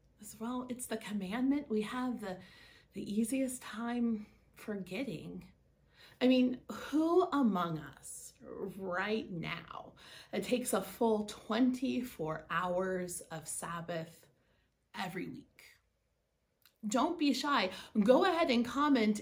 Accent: American